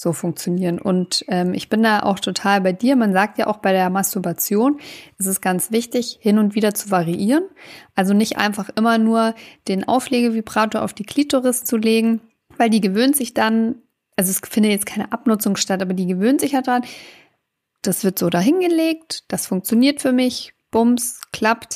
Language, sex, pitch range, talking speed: German, female, 195-240 Hz, 190 wpm